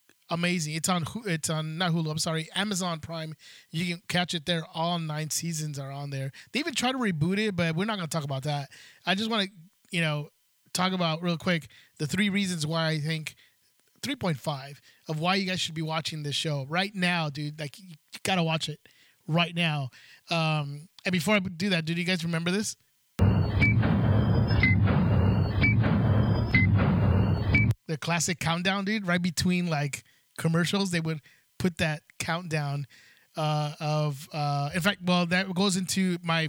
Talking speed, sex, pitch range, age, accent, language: 175 wpm, male, 150-185 Hz, 20-39, American, English